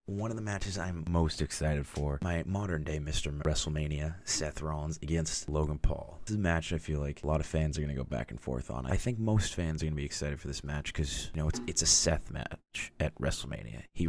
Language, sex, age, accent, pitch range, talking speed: English, male, 30-49, American, 75-90 Hz, 245 wpm